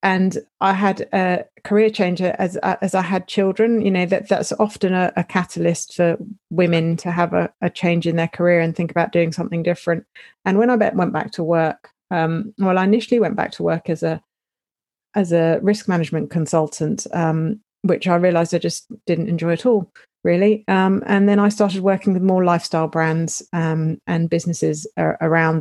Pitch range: 165-200 Hz